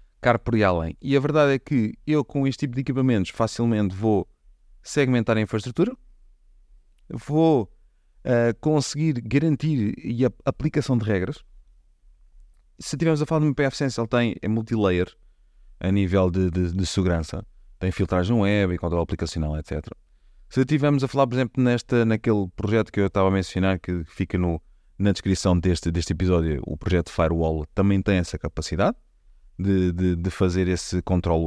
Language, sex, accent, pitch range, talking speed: Portuguese, male, Portuguese, 90-130 Hz, 160 wpm